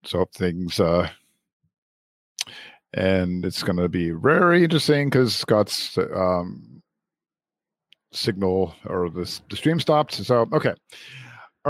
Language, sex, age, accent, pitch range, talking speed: English, male, 50-69, American, 100-125 Hz, 115 wpm